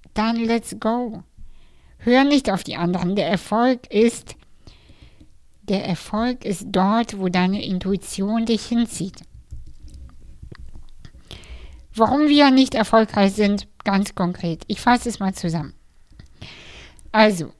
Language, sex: German, female